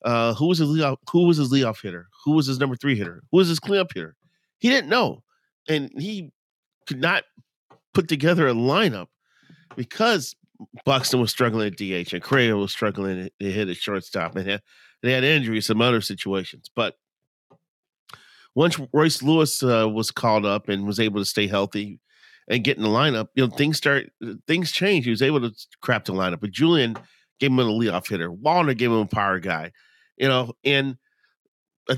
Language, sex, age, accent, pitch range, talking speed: English, male, 40-59, American, 105-140 Hz, 195 wpm